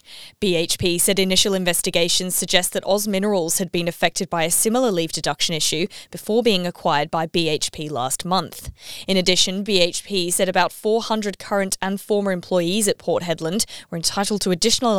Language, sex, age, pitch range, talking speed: English, female, 20-39, 175-200 Hz, 165 wpm